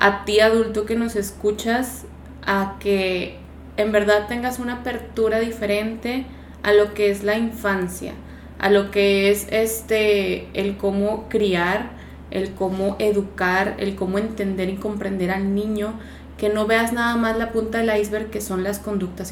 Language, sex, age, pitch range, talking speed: Spanish, female, 20-39, 195-225 Hz, 160 wpm